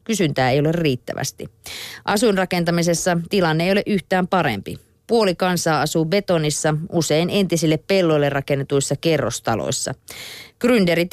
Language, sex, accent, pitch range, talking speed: Finnish, female, native, 150-185 Hz, 110 wpm